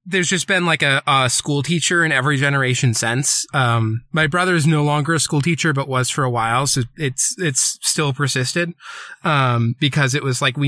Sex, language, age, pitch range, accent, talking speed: male, English, 20-39, 125-155 Hz, American, 210 wpm